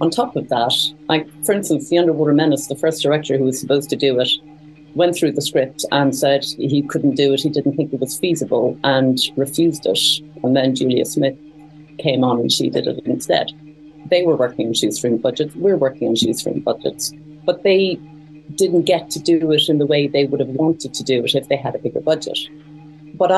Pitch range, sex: 135-155 Hz, female